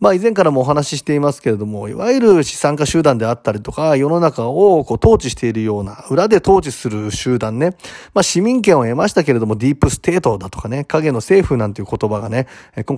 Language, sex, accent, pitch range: Japanese, male, native, 115-190 Hz